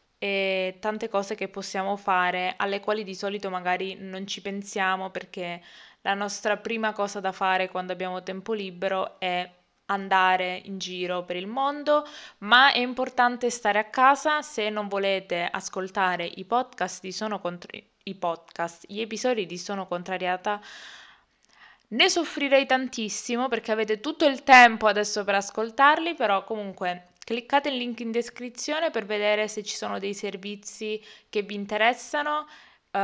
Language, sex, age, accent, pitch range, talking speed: Italian, female, 20-39, native, 190-245 Hz, 150 wpm